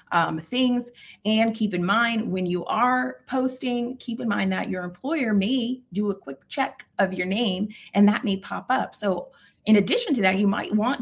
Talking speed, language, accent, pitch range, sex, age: 200 wpm, English, American, 180-225 Hz, female, 30-49